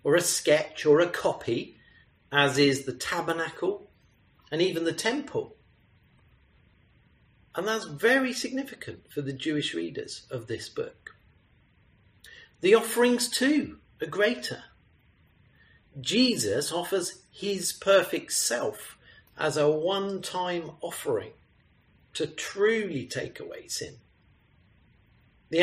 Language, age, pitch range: English, 40-59, 150-245 Hz